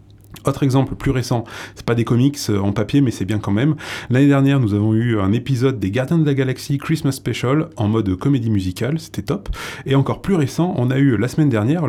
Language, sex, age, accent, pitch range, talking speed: French, male, 20-39, French, 105-145 Hz, 225 wpm